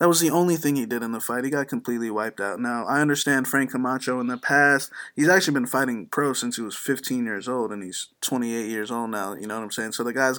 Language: English